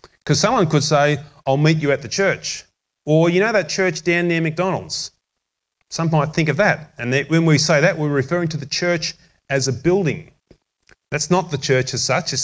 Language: English